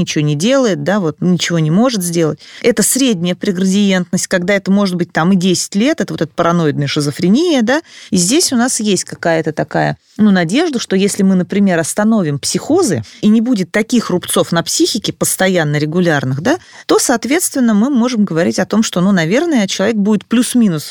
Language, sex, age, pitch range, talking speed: Russian, female, 30-49, 165-225 Hz, 185 wpm